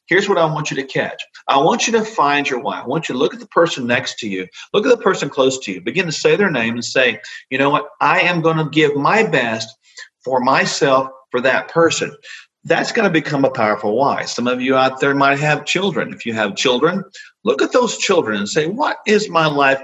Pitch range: 125-195 Hz